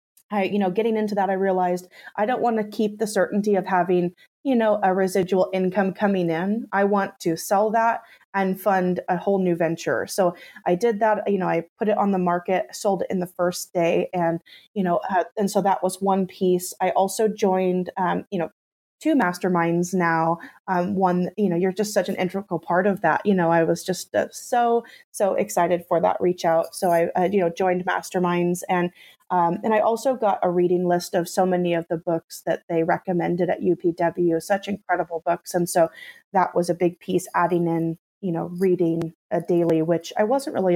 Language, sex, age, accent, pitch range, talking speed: English, female, 20-39, American, 170-195 Hz, 210 wpm